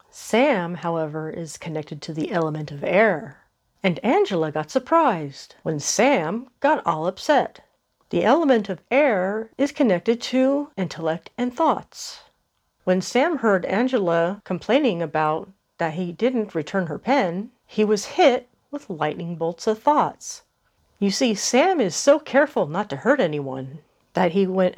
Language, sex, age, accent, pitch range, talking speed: English, female, 40-59, American, 170-250 Hz, 150 wpm